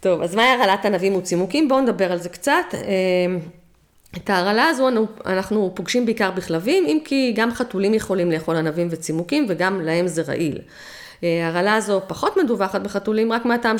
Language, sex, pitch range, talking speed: Hebrew, female, 175-220 Hz, 160 wpm